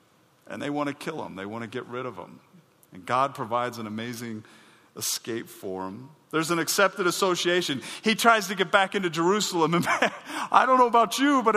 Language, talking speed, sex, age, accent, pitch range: English, 205 wpm, male, 40-59, American, 135-215 Hz